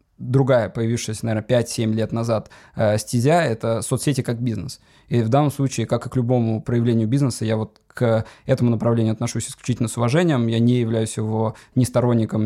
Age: 20-39